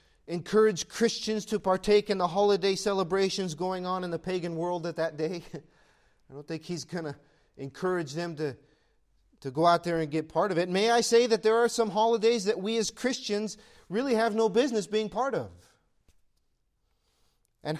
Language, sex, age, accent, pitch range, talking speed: English, male, 40-59, American, 145-205 Hz, 185 wpm